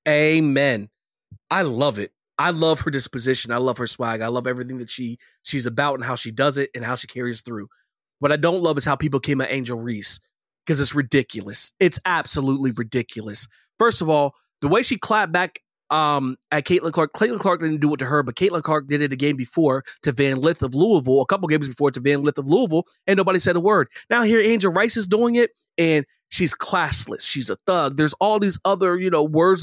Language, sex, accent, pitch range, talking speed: English, male, American, 135-195 Hz, 225 wpm